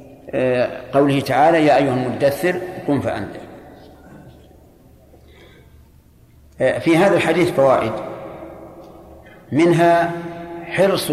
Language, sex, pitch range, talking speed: Arabic, male, 135-170 Hz, 70 wpm